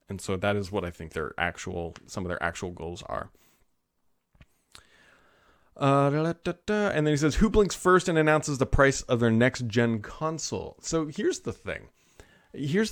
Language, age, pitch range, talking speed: English, 30-49, 105-140 Hz, 185 wpm